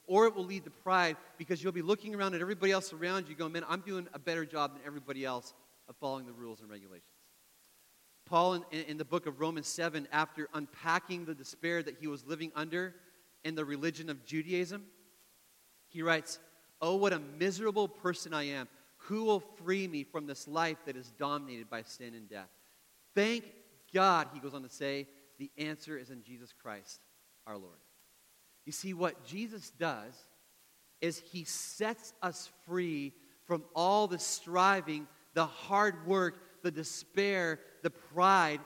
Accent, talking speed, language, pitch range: American, 175 wpm, English, 150-185 Hz